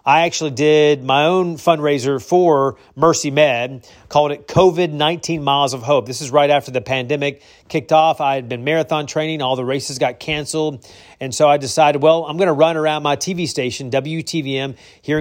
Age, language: 40-59, English